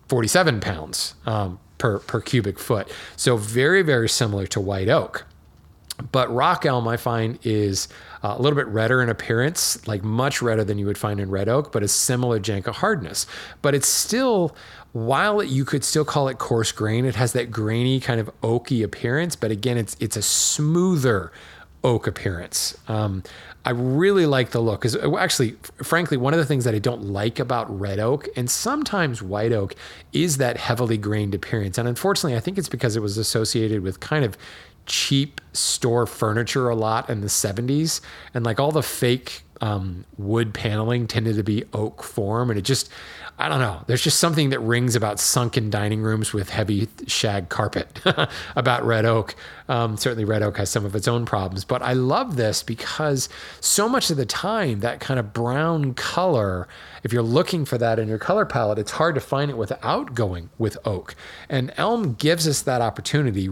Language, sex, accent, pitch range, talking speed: English, male, American, 105-135 Hz, 190 wpm